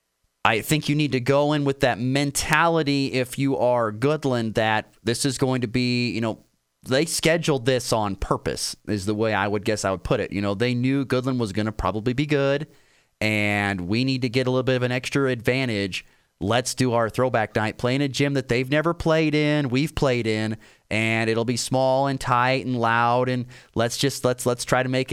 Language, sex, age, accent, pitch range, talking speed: English, male, 30-49, American, 115-145 Hz, 220 wpm